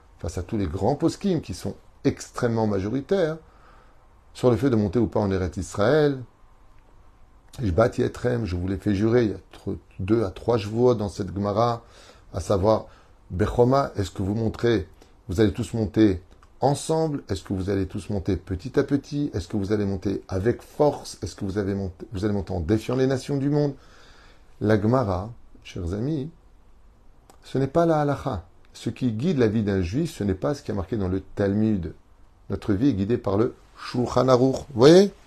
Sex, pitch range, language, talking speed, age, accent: male, 95-125 Hz, French, 195 wpm, 30-49, French